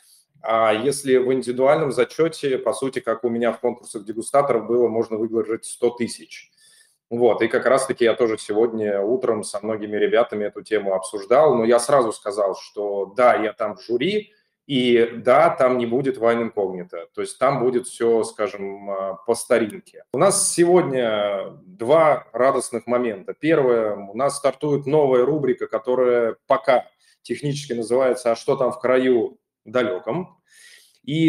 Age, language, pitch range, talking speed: 20-39, Russian, 115-145 Hz, 155 wpm